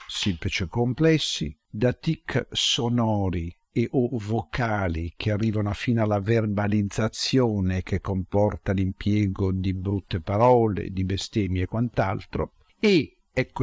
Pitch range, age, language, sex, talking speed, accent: 100-125 Hz, 50-69, Italian, male, 115 wpm, native